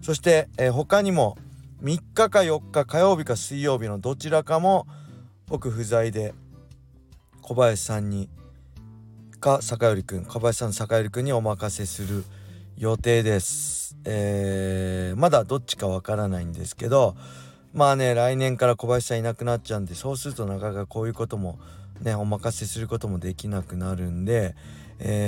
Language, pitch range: Japanese, 95-125 Hz